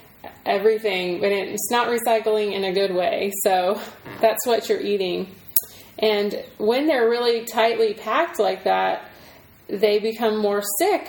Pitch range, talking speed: 195-220 Hz, 140 wpm